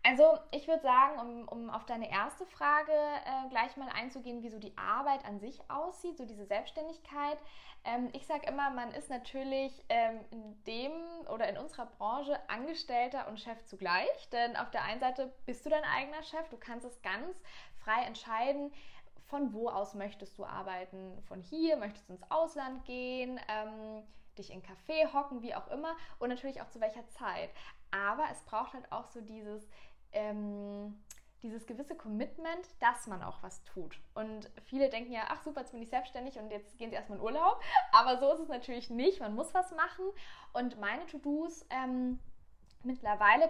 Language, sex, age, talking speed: German, female, 10-29, 185 wpm